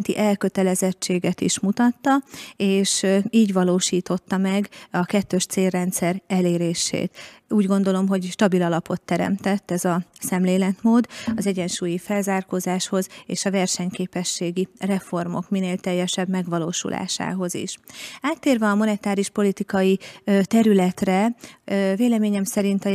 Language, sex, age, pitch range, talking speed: Hungarian, female, 30-49, 185-210 Hz, 100 wpm